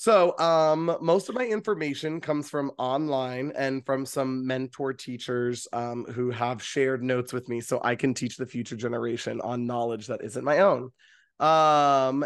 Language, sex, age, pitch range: English, male, 20-39, 130-160 Hz